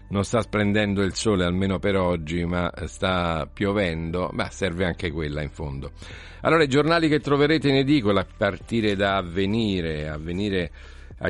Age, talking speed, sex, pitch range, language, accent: 50-69, 160 wpm, male, 85-100 Hz, Italian, native